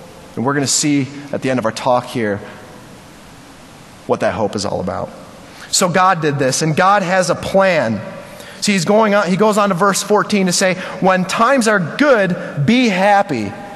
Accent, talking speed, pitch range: American, 190 wpm, 145-200 Hz